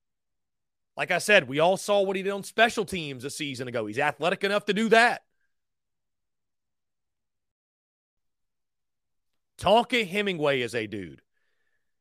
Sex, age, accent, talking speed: male, 30-49, American, 130 wpm